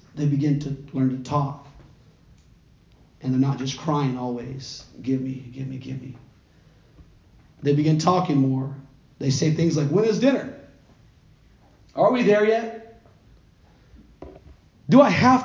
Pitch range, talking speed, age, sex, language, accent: 135-165 Hz, 140 wpm, 40-59, male, English, American